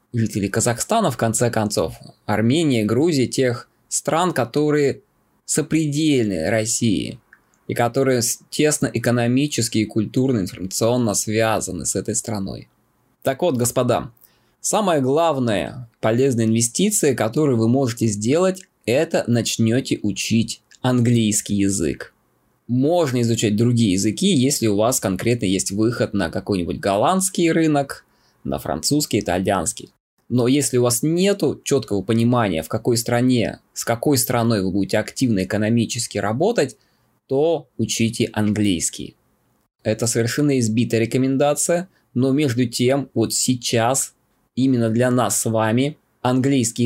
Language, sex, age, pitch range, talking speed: Russian, male, 20-39, 110-135 Hz, 120 wpm